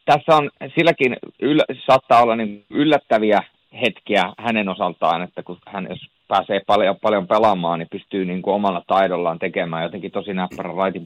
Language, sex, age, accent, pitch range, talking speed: Finnish, male, 30-49, native, 95-110 Hz, 165 wpm